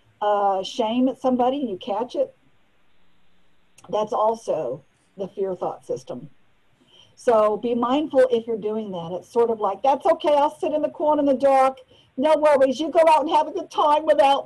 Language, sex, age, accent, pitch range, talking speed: English, female, 50-69, American, 190-260 Hz, 185 wpm